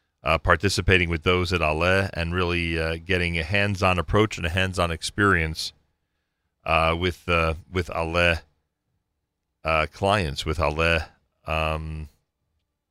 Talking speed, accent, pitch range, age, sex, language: 125 wpm, American, 85-115 Hz, 40-59, male, English